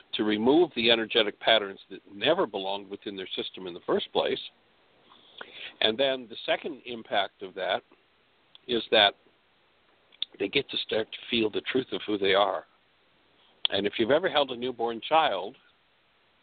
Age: 60-79